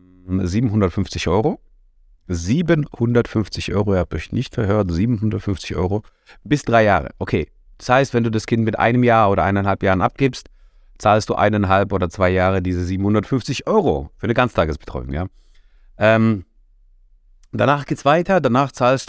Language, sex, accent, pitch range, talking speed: German, male, German, 90-115 Hz, 150 wpm